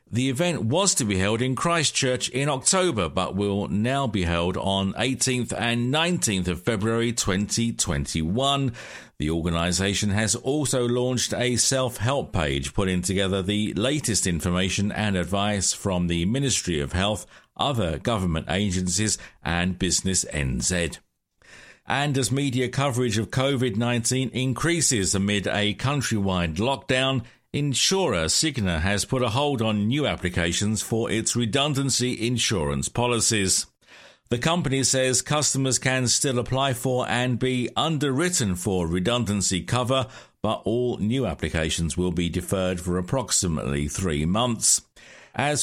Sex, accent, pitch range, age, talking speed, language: male, British, 95-130 Hz, 50-69, 130 wpm, English